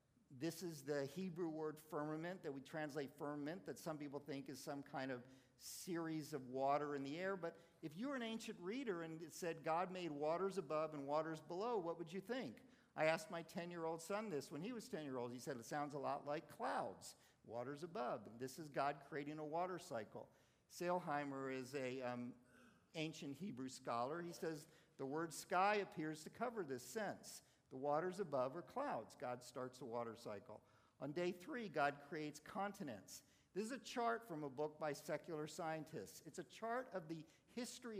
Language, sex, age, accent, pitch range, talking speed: English, male, 50-69, American, 140-175 Hz, 195 wpm